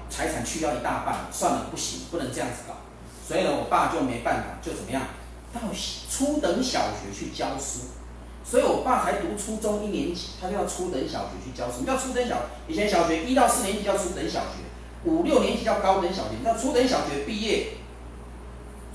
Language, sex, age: Chinese, male, 40-59